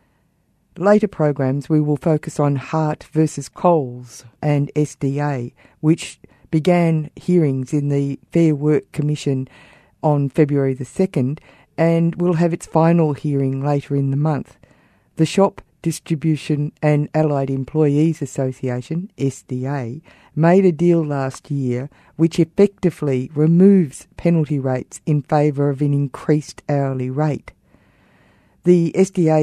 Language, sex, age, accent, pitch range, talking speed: English, female, 50-69, Australian, 135-165 Hz, 120 wpm